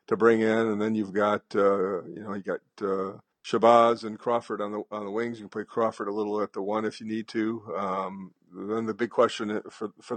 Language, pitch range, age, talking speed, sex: English, 100-110 Hz, 50-69, 240 wpm, male